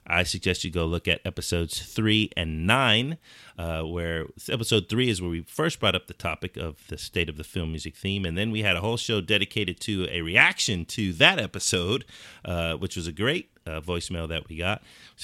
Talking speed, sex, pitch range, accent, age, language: 215 wpm, male, 85-115 Hz, American, 30-49, English